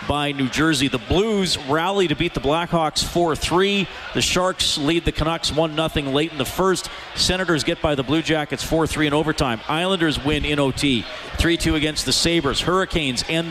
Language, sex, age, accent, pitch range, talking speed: English, male, 40-59, American, 135-160 Hz, 180 wpm